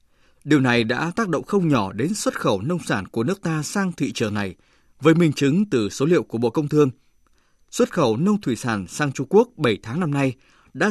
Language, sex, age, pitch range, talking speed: Vietnamese, male, 20-39, 110-180 Hz, 230 wpm